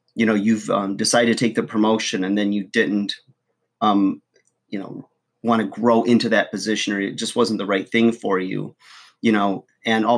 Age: 30-49